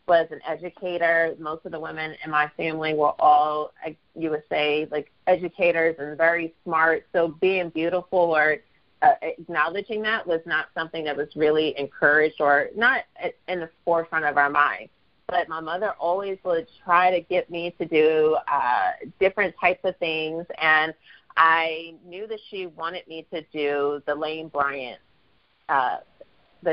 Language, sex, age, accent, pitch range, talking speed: English, female, 30-49, American, 160-195 Hz, 155 wpm